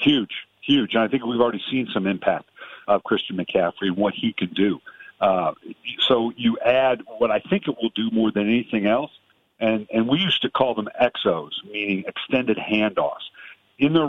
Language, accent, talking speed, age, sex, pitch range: English, American, 190 wpm, 50-69, male, 100-120 Hz